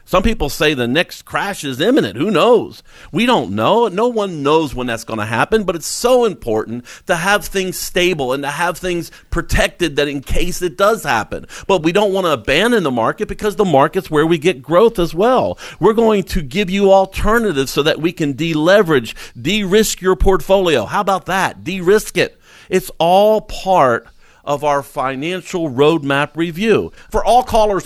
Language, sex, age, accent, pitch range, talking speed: English, male, 50-69, American, 140-195 Hz, 185 wpm